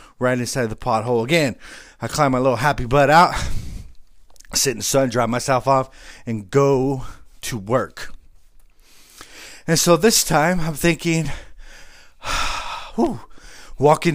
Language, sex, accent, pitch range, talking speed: English, male, American, 120-165 Hz, 125 wpm